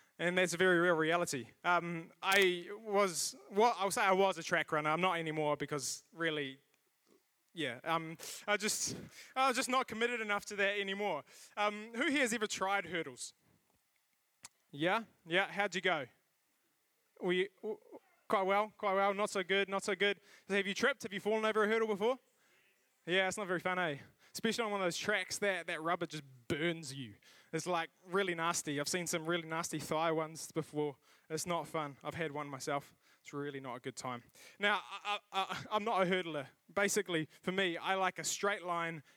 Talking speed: 195 wpm